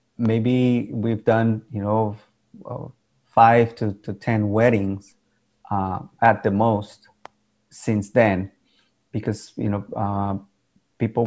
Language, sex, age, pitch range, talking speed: English, male, 30-49, 100-120 Hz, 110 wpm